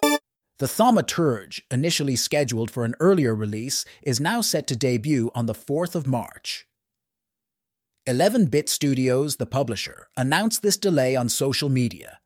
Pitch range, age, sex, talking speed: 125-185 Hz, 30-49, male, 135 wpm